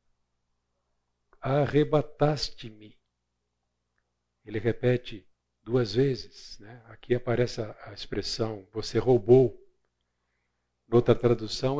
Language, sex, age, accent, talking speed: Portuguese, male, 50-69, Brazilian, 70 wpm